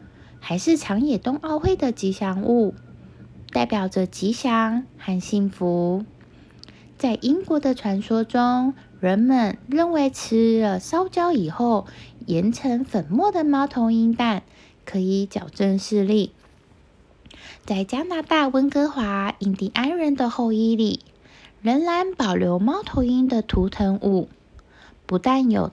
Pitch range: 195-265 Hz